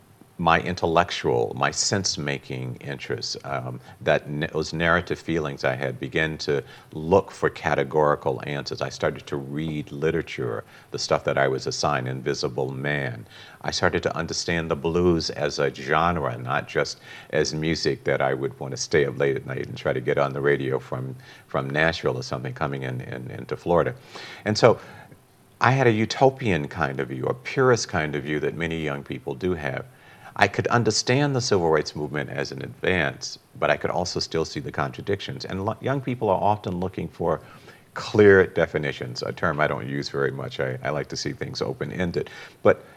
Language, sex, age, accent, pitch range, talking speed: English, male, 50-69, American, 70-90 Hz, 185 wpm